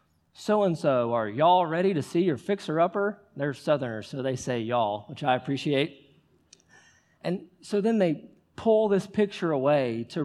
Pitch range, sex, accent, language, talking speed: 140-185 Hz, male, American, English, 160 wpm